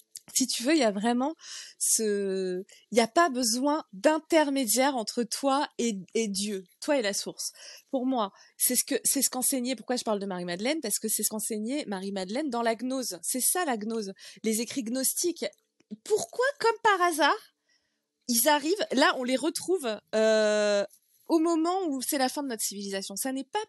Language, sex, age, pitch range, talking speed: French, female, 20-39, 225-305 Hz, 180 wpm